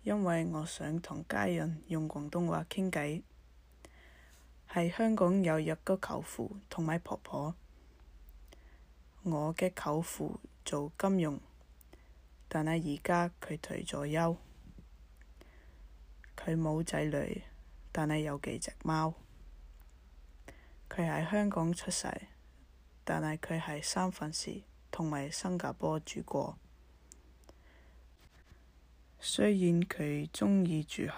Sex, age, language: female, 10-29, English